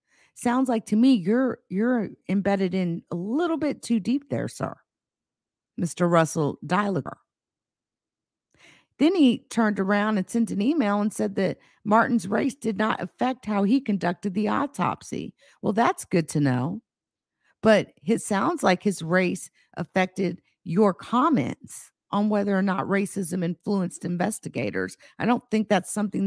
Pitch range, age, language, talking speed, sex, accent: 150-220 Hz, 50-69, English, 150 wpm, female, American